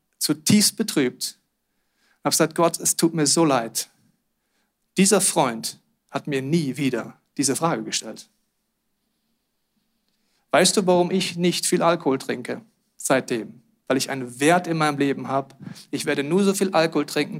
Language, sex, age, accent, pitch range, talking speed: German, male, 40-59, German, 140-185 Hz, 150 wpm